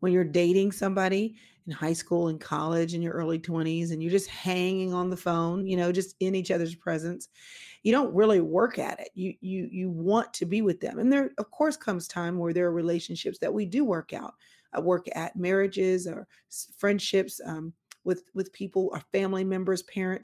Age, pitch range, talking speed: 40-59, 175-205 Hz, 210 wpm